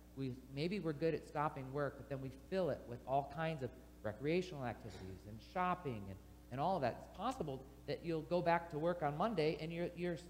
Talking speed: 210 wpm